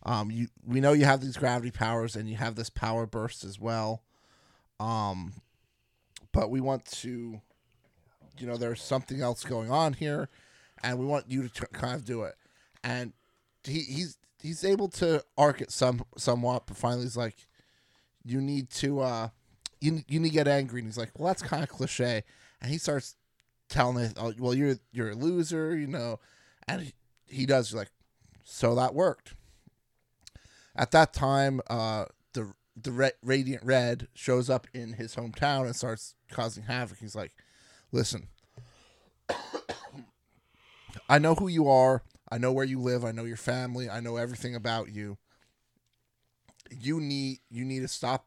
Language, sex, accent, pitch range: English, male, American, 115-135 Hz